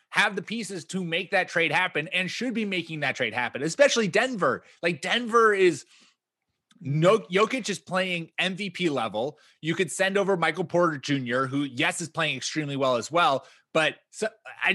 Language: English